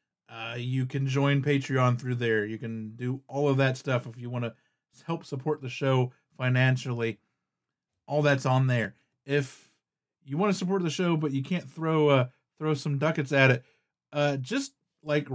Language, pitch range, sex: English, 125-155 Hz, male